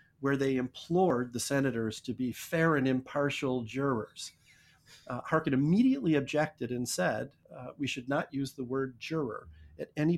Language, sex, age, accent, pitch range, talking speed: English, male, 50-69, American, 125-150 Hz, 160 wpm